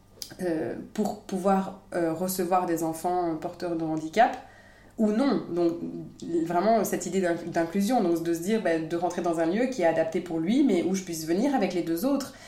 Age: 20-39